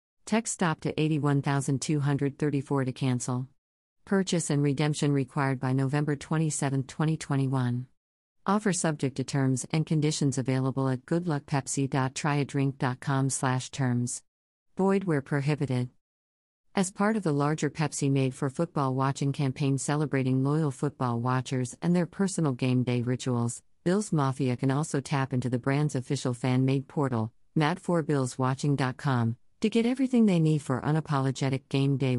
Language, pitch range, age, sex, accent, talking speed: English, 130-155 Hz, 50-69, female, American, 130 wpm